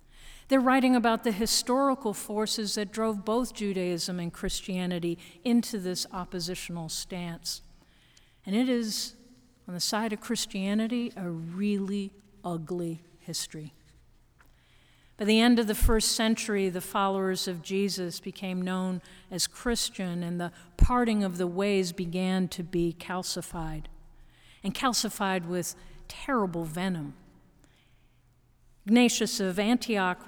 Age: 50-69